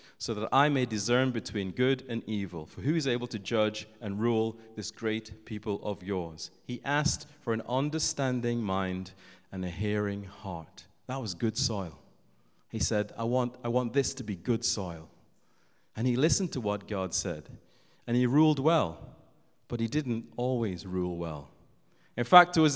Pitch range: 110-150 Hz